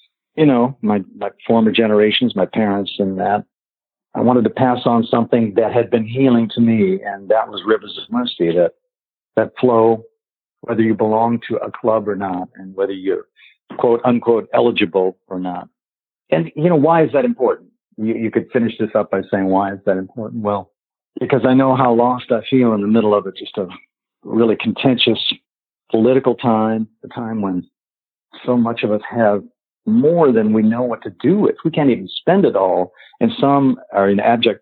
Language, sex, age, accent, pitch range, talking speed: English, male, 50-69, American, 105-125 Hz, 195 wpm